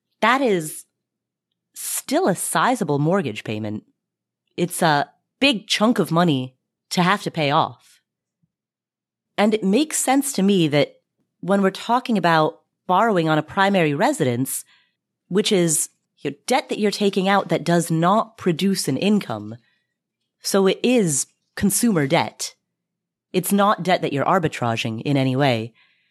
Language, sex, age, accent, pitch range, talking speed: English, female, 30-49, American, 155-205 Hz, 145 wpm